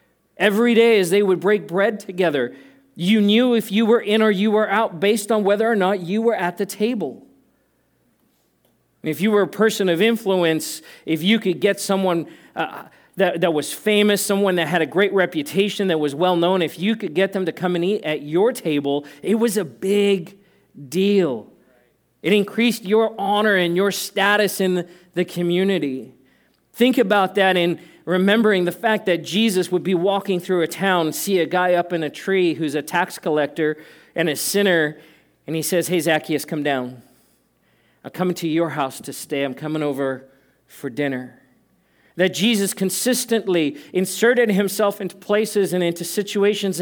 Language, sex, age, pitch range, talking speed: English, male, 40-59, 165-205 Hz, 180 wpm